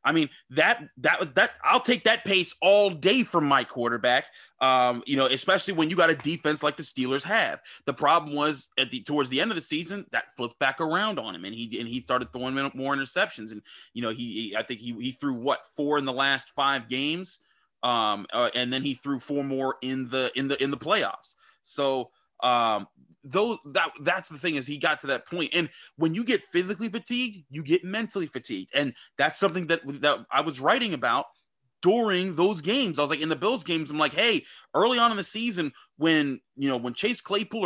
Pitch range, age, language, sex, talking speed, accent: 135-200 Hz, 30-49, English, male, 225 wpm, American